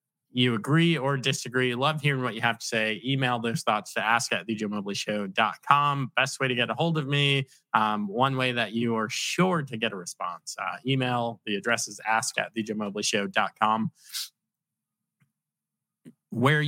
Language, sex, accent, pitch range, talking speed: English, male, American, 110-140 Hz, 180 wpm